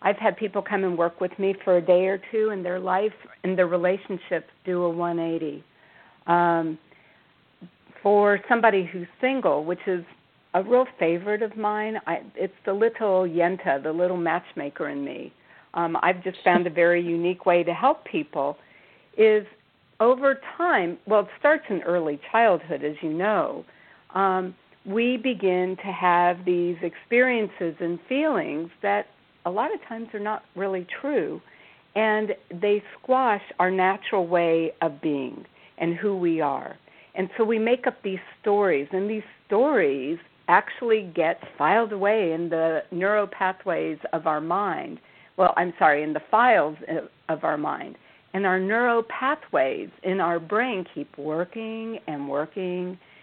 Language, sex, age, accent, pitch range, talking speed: English, female, 50-69, American, 170-215 Hz, 155 wpm